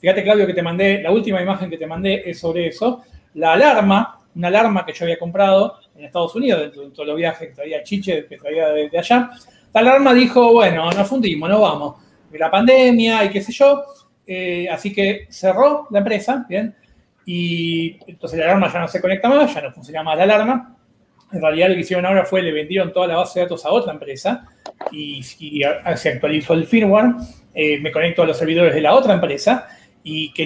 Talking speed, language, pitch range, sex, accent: 215 wpm, Spanish, 160-215 Hz, male, Argentinian